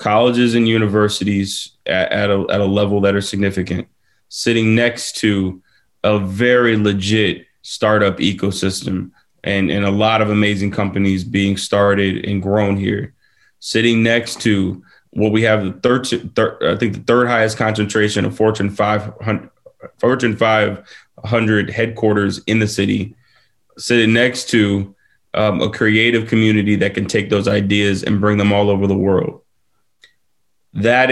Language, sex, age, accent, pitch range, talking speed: English, male, 20-39, American, 100-110 Hz, 145 wpm